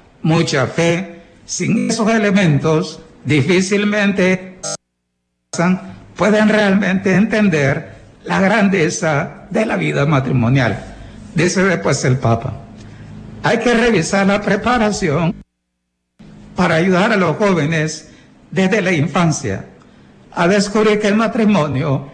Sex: male